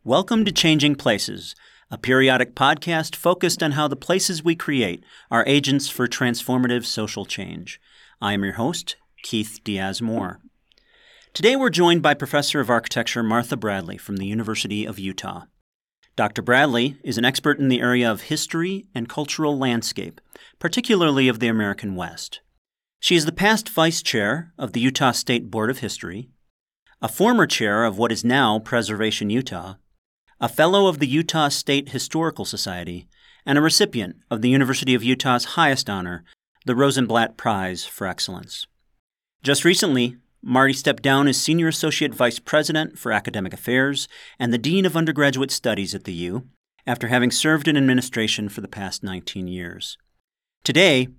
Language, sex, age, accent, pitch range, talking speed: English, male, 40-59, American, 115-155 Hz, 160 wpm